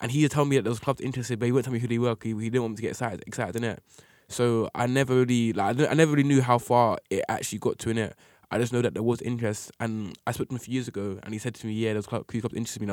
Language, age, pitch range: English, 10-29, 110-130 Hz